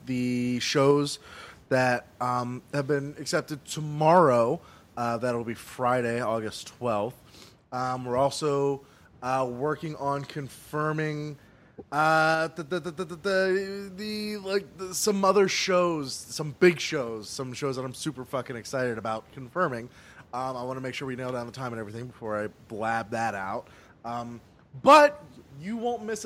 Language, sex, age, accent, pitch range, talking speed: English, male, 20-39, American, 125-185 Hz, 150 wpm